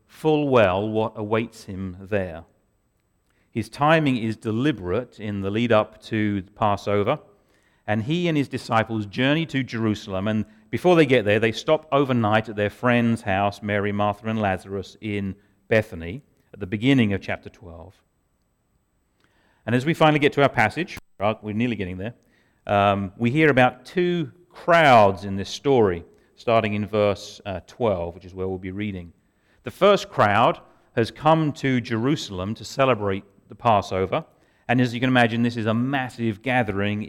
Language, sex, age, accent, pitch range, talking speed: English, male, 40-59, British, 100-130 Hz, 165 wpm